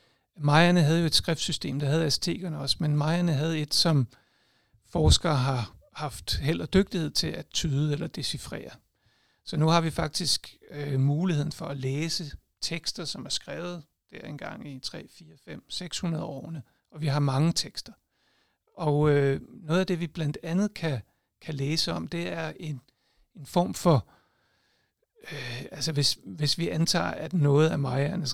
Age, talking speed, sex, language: 60-79, 165 wpm, male, Danish